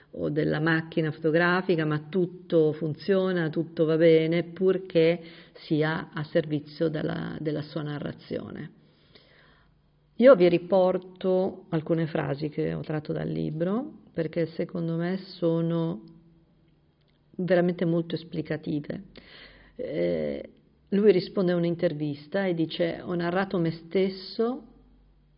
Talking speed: 110 wpm